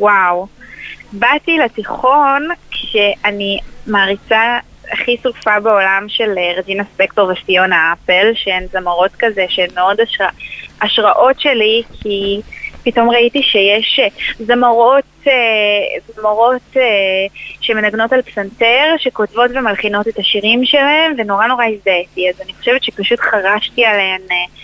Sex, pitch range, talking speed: female, 195-250 Hz, 105 wpm